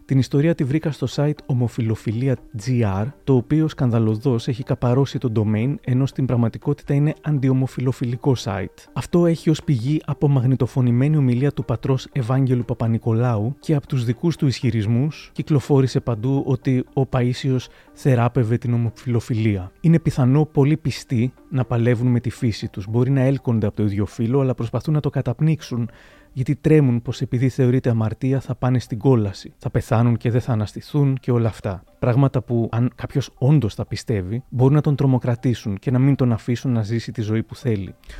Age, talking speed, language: 30-49, 175 wpm, Greek